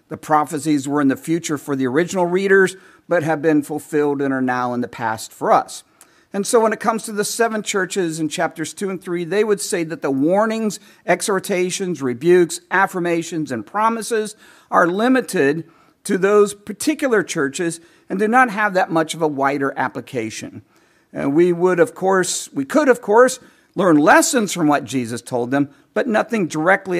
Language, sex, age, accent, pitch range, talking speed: English, male, 50-69, American, 150-205 Hz, 180 wpm